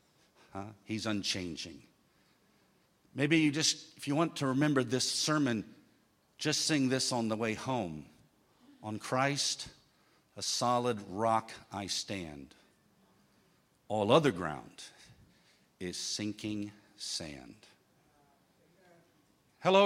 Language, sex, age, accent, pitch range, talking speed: English, male, 50-69, American, 140-195 Hz, 105 wpm